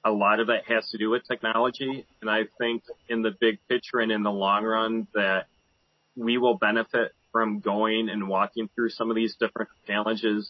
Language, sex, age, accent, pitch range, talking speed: English, male, 30-49, American, 105-120 Hz, 200 wpm